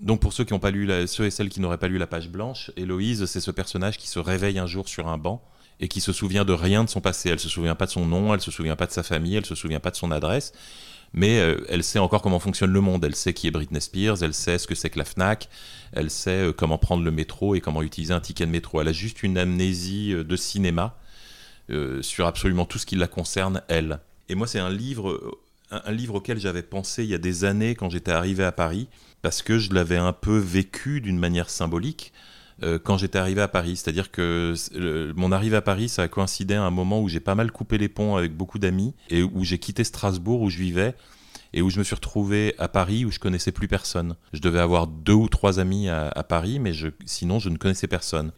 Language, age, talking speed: French, 30-49, 260 wpm